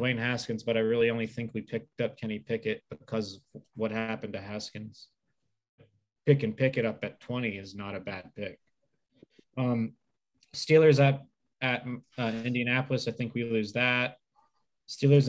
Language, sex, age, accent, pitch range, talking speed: English, male, 20-39, American, 110-130 Hz, 160 wpm